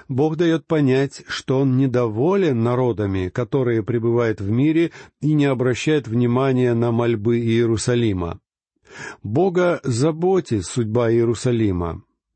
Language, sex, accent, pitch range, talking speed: Russian, male, native, 115-155 Hz, 105 wpm